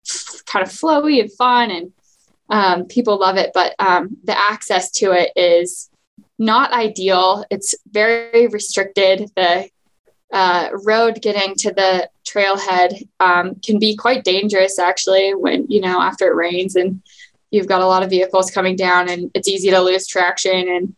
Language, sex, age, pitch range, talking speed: English, female, 10-29, 185-220 Hz, 165 wpm